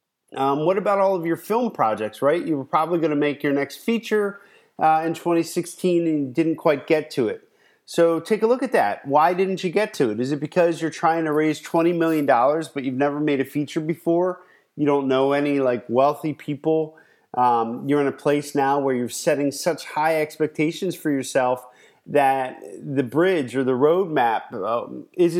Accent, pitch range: American, 145-180 Hz